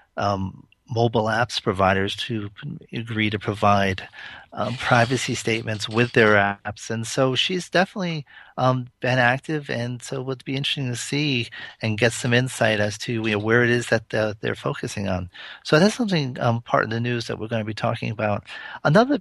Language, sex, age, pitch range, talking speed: English, male, 40-59, 110-130 Hz, 180 wpm